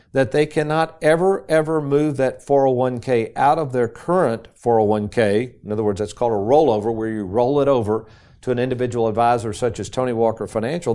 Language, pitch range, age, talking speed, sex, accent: English, 115-150 Hz, 50-69, 185 wpm, male, American